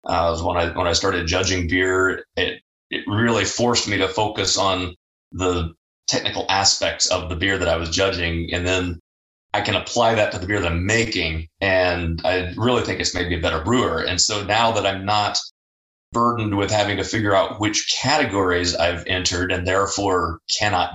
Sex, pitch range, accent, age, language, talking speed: male, 85-105 Hz, American, 30-49, English, 190 wpm